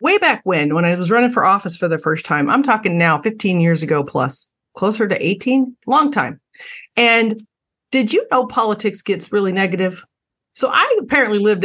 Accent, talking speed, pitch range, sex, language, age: American, 190 wpm, 170-225 Hz, female, English, 40-59